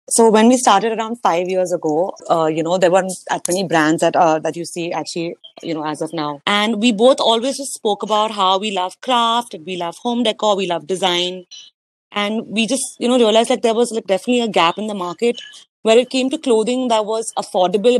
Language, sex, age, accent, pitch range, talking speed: English, female, 30-49, Indian, 175-225 Hz, 235 wpm